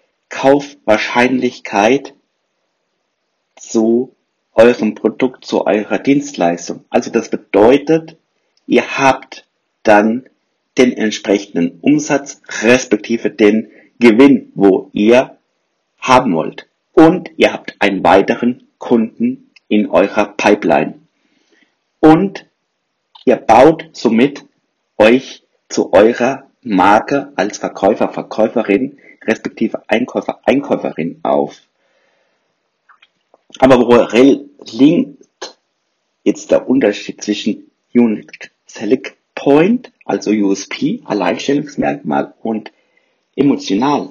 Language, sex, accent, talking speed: German, male, German, 85 wpm